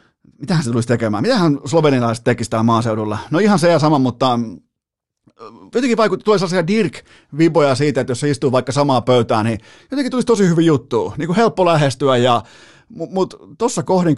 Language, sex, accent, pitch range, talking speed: Finnish, male, native, 125-170 Hz, 165 wpm